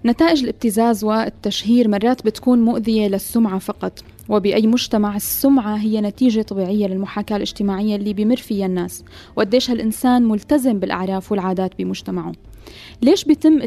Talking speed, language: 125 wpm, Arabic